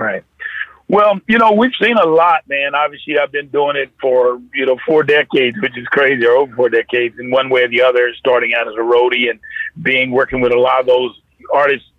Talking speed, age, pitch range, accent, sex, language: 230 wpm, 50-69, 130-170 Hz, American, male, English